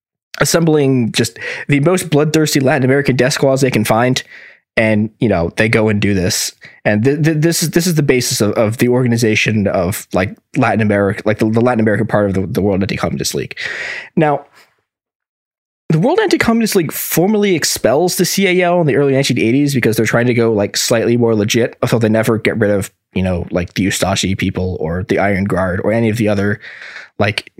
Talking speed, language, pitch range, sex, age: 205 wpm, English, 110-165 Hz, male, 20-39